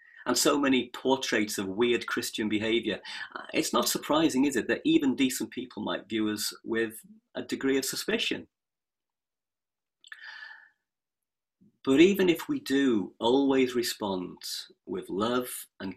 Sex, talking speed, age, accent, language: male, 130 wpm, 40-59, British, English